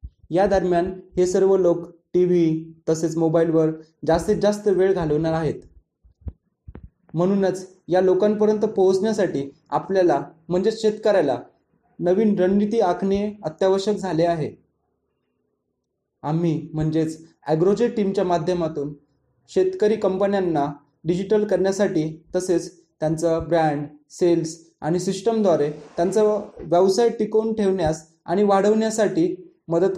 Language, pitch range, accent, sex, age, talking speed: English, 160-190 Hz, Indian, male, 30-49, 90 wpm